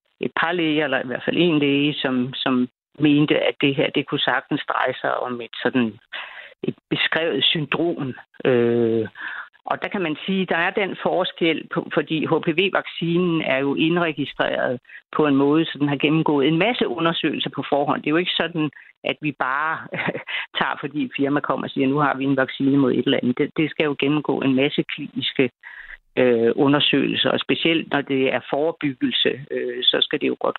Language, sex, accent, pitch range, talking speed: Danish, female, native, 130-160 Hz, 195 wpm